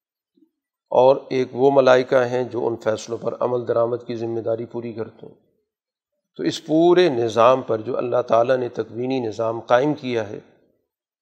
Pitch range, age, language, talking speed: 115-145 Hz, 40-59, Urdu, 165 wpm